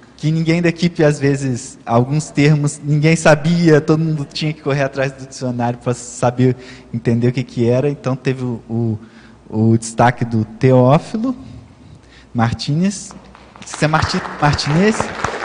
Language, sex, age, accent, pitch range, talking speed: Portuguese, male, 20-39, Brazilian, 115-145 Hz, 150 wpm